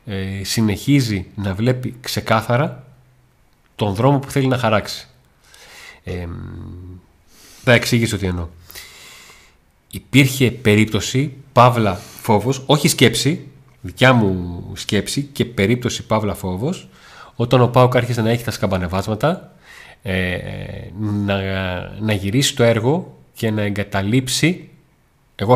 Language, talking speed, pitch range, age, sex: Greek, 110 wpm, 95-125 Hz, 30-49, male